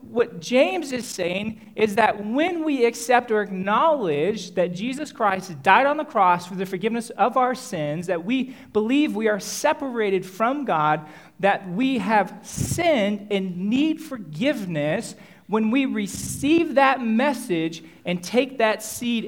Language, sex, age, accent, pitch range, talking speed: English, male, 40-59, American, 195-265 Hz, 150 wpm